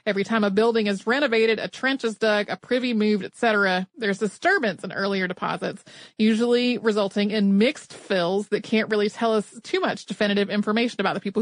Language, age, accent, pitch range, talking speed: English, 30-49, American, 205-245 Hz, 190 wpm